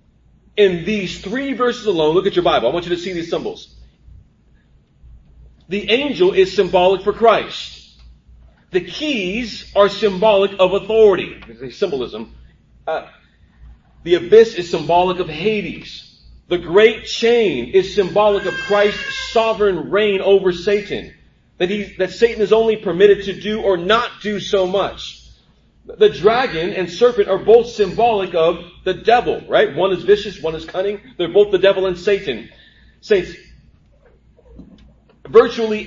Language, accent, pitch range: English, American, 175-225 Hz